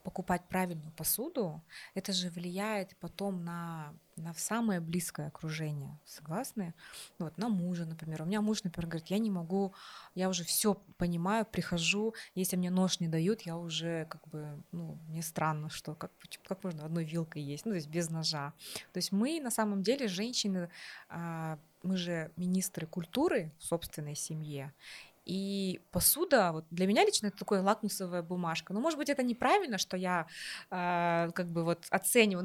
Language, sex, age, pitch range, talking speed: Russian, female, 20-39, 165-200 Hz, 165 wpm